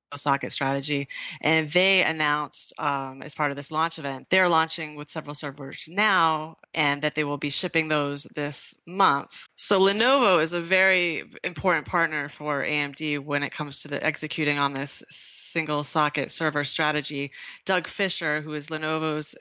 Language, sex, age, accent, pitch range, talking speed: English, female, 20-39, American, 145-160 Hz, 165 wpm